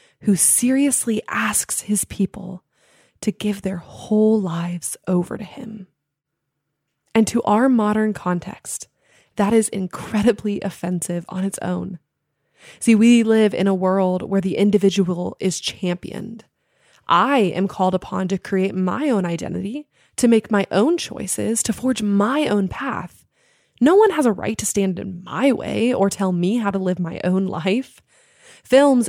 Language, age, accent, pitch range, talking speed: English, 20-39, American, 190-240 Hz, 155 wpm